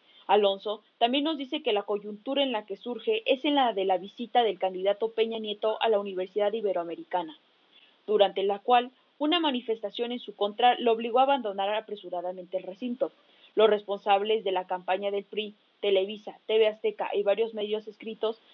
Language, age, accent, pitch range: English, 30-49, Mexican, 200-245 Hz